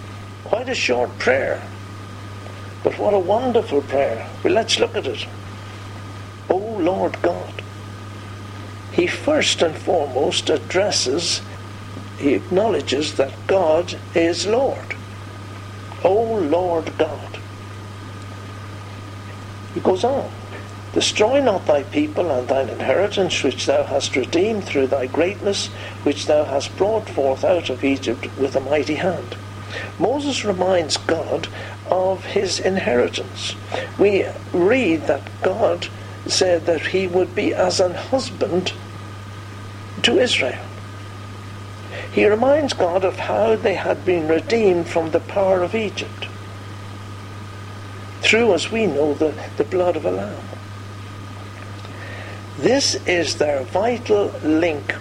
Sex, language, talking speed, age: male, English, 120 wpm, 60-79